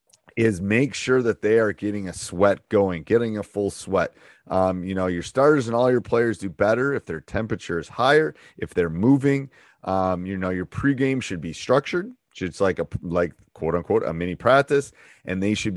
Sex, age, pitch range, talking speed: male, 30-49, 100-130 Hz, 200 wpm